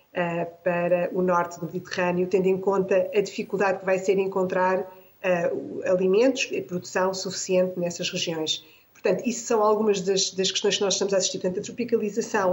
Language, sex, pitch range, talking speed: Portuguese, female, 180-210 Hz, 155 wpm